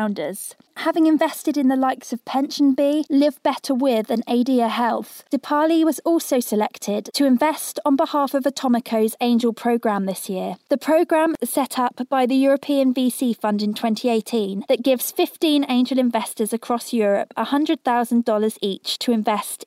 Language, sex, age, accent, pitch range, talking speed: English, female, 20-39, British, 220-275 Hz, 160 wpm